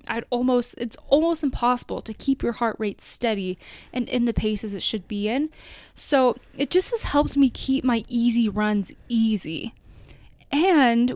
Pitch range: 215-265 Hz